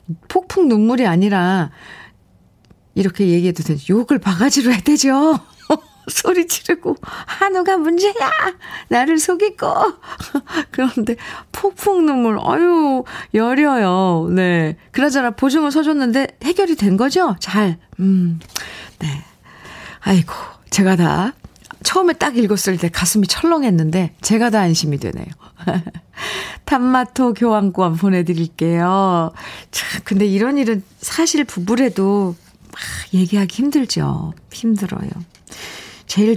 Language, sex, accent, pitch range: Korean, female, native, 185-275 Hz